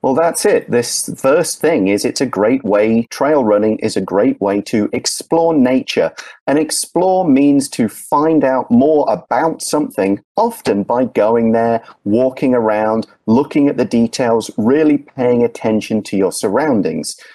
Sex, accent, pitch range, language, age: male, British, 110-155 Hz, Chinese, 40-59